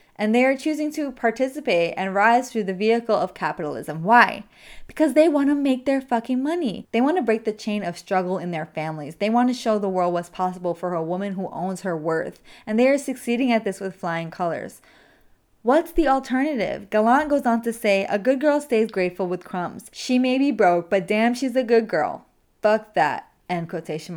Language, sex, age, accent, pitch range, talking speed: English, female, 20-39, American, 190-260 Hz, 215 wpm